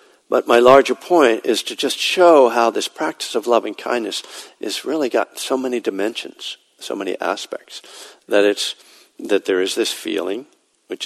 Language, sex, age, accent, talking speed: English, male, 60-79, American, 170 wpm